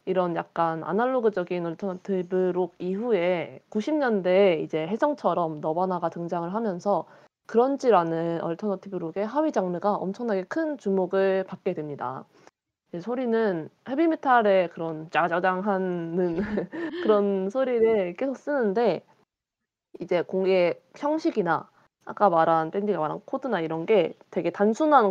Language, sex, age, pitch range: Korean, female, 20-39, 170-225 Hz